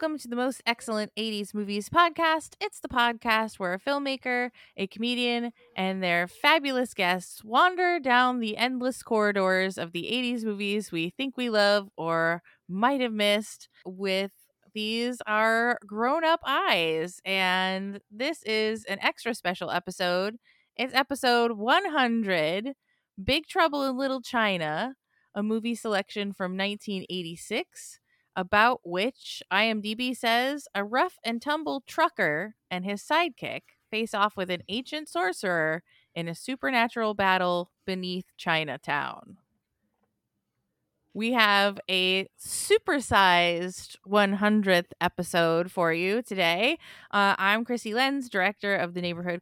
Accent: American